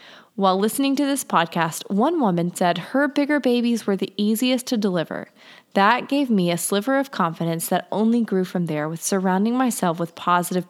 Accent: American